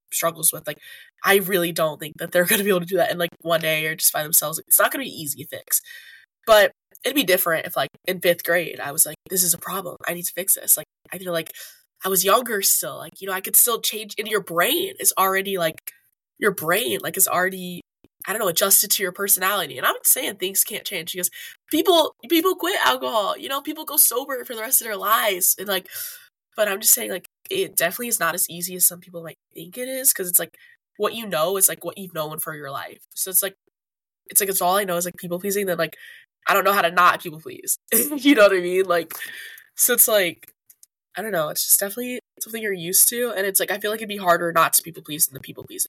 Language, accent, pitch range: English, American, 175-235 Hz